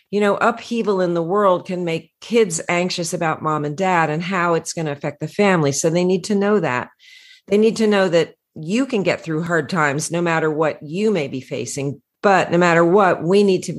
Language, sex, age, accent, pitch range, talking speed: English, female, 40-59, American, 150-185 Hz, 230 wpm